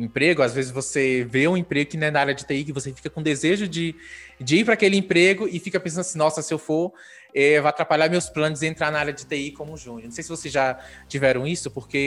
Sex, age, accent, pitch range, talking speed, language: male, 20-39, Brazilian, 130-160 Hz, 265 wpm, Portuguese